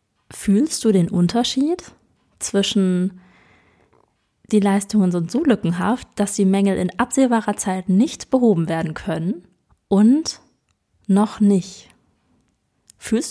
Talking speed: 110 wpm